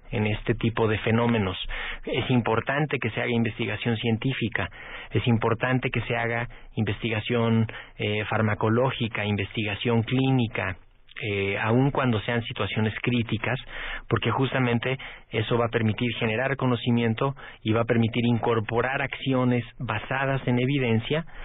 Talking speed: 125 wpm